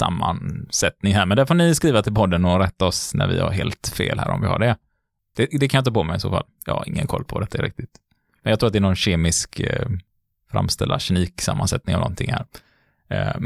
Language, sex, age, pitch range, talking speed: Swedish, male, 20-39, 85-110 Hz, 240 wpm